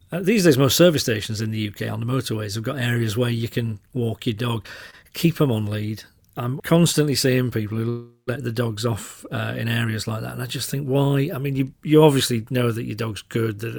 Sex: male